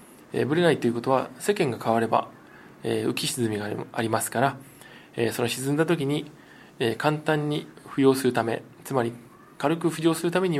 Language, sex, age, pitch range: Japanese, male, 20-39, 120-165 Hz